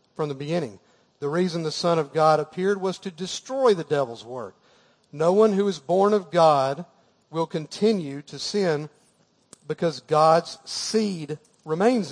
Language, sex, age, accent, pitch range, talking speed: English, male, 40-59, American, 145-180 Hz, 155 wpm